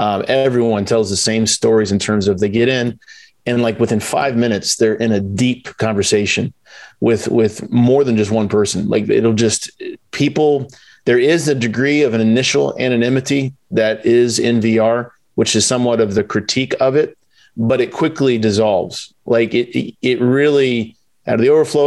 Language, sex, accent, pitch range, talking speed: English, male, American, 110-135 Hz, 180 wpm